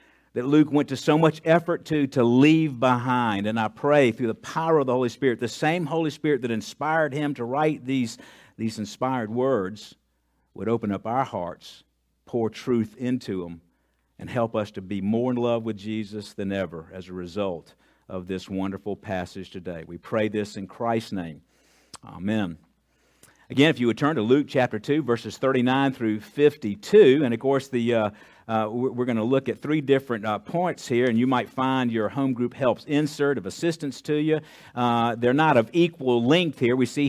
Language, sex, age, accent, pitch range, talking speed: English, male, 50-69, American, 105-145 Hz, 200 wpm